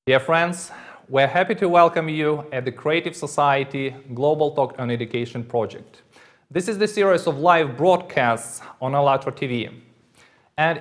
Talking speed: 155 wpm